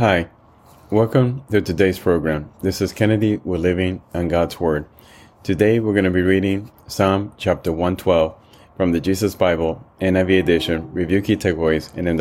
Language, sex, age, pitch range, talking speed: English, male, 30-49, 85-105 Hz, 160 wpm